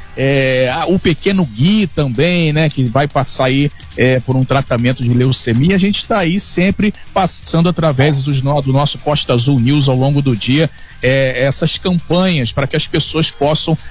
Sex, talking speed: male, 175 wpm